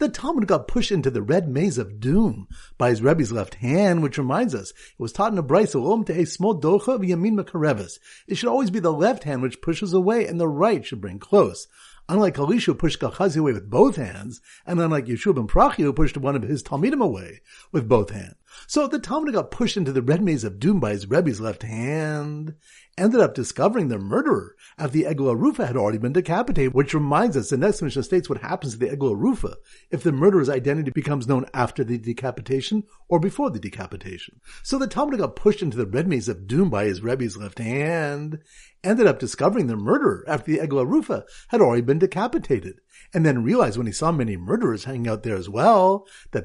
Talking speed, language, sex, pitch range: 215 wpm, English, male, 120-195 Hz